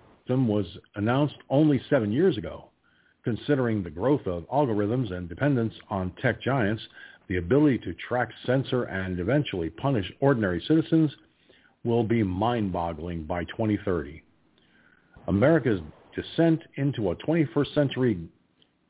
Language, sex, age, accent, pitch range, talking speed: English, male, 50-69, American, 100-155 Hz, 120 wpm